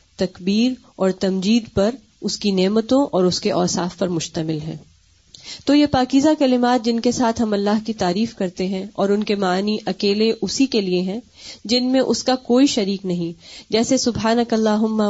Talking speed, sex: 185 wpm, female